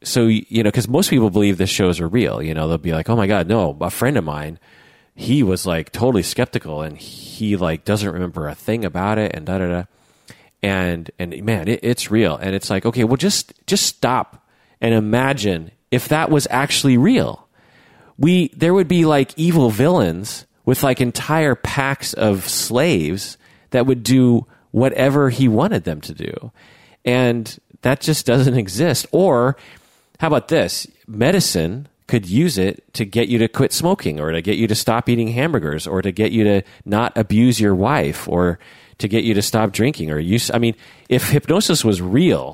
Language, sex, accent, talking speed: English, male, American, 190 wpm